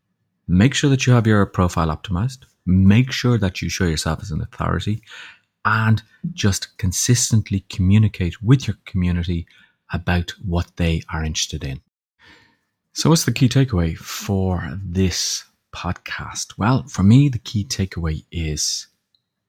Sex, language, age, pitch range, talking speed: male, English, 30-49, 85-110 Hz, 140 wpm